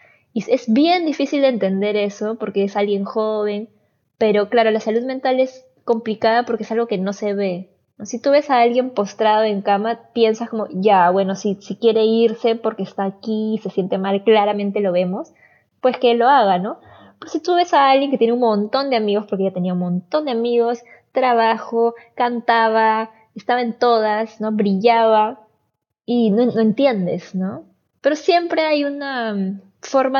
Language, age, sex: Spanish, 20-39, female